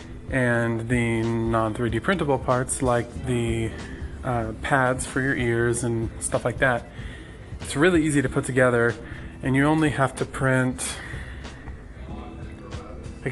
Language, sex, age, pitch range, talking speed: English, male, 20-39, 115-135 Hz, 130 wpm